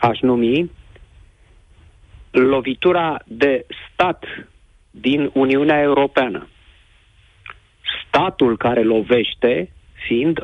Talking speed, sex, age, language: 70 wpm, male, 50-69, Romanian